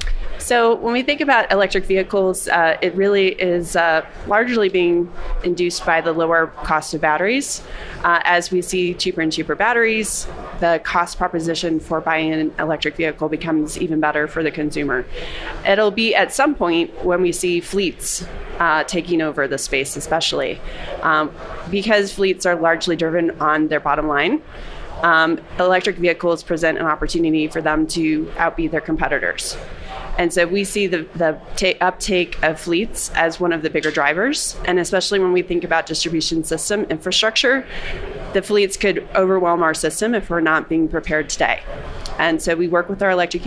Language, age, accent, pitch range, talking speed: English, 30-49, American, 160-185 Hz, 170 wpm